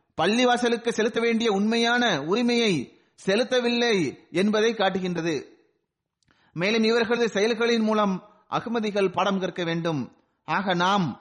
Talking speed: 90 wpm